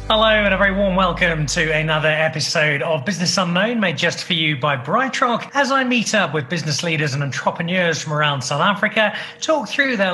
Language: English